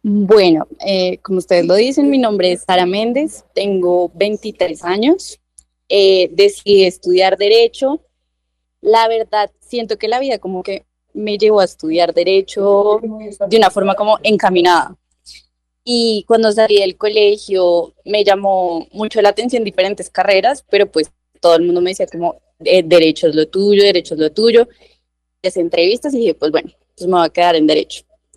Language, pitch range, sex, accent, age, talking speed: Spanish, 180-225 Hz, female, Colombian, 20-39, 165 wpm